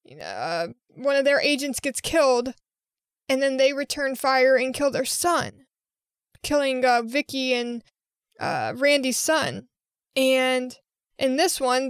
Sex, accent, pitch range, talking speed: female, American, 255-305 Hz, 135 wpm